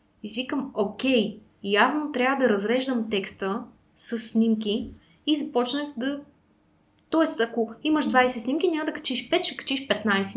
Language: Bulgarian